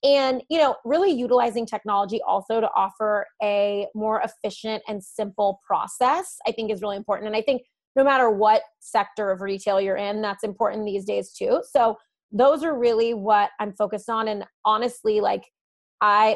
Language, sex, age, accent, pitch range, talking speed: English, female, 20-39, American, 205-245 Hz, 175 wpm